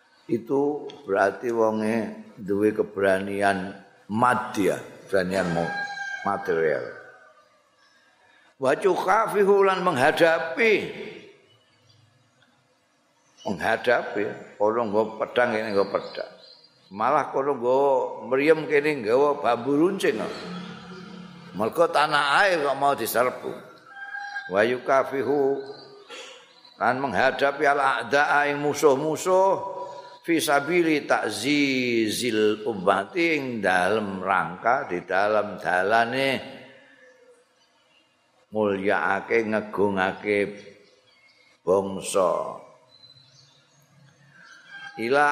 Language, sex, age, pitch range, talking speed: Indonesian, male, 50-69, 110-175 Hz, 70 wpm